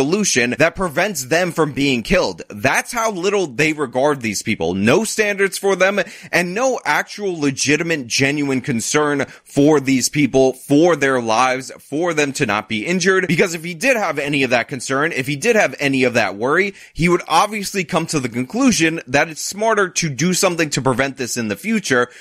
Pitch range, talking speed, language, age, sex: 120-170 Hz, 195 wpm, English, 20-39, male